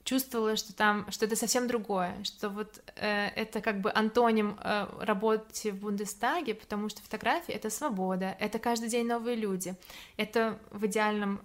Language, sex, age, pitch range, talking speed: Russian, female, 20-39, 205-225 Hz, 160 wpm